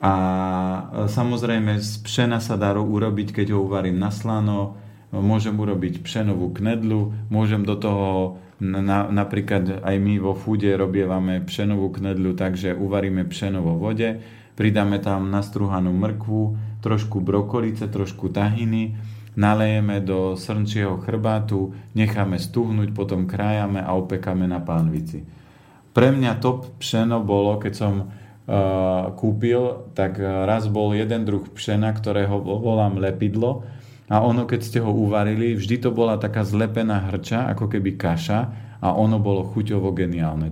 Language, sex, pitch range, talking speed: Slovak, male, 95-110 Hz, 135 wpm